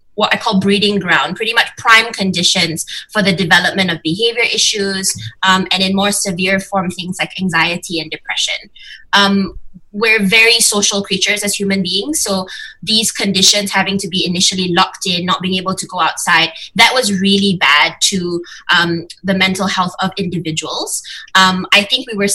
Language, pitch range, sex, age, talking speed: English, 185-225 Hz, female, 20-39, 175 wpm